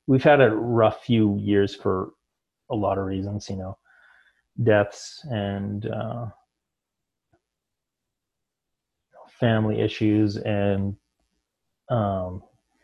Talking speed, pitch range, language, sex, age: 95 wpm, 95-110 Hz, English, male, 30-49